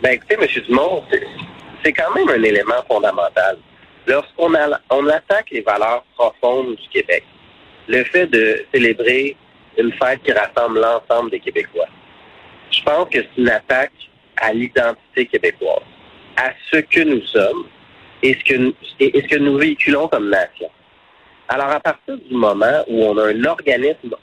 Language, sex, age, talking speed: French, male, 40-59, 160 wpm